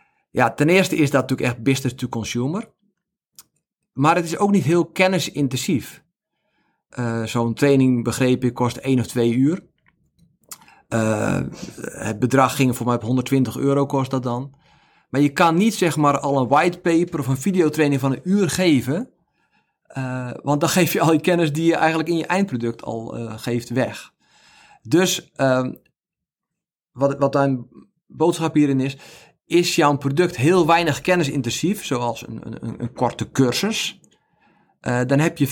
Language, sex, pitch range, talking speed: Dutch, male, 125-170 Hz, 160 wpm